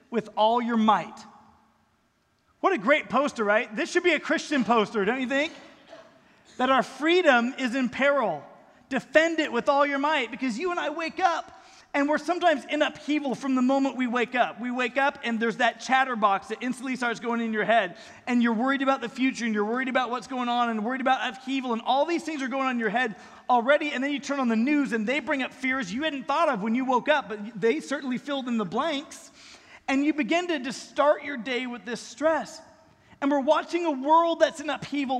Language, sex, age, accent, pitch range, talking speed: English, male, 30-49, American, 235-290 Hz, 230 wpm